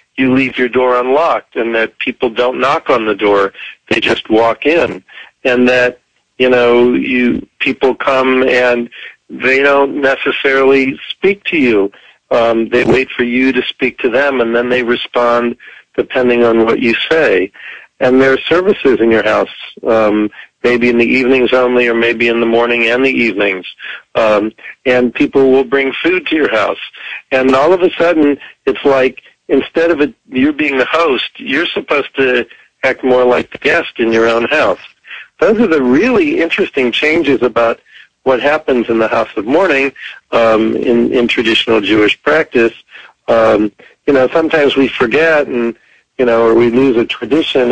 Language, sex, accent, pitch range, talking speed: English, male, American, 115-135 Hz, 175 wpm